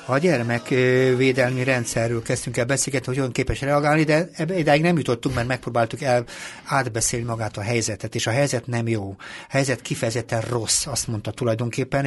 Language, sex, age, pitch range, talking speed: Hungarian, male, 60-79, 115-140 Hz, 170 wpm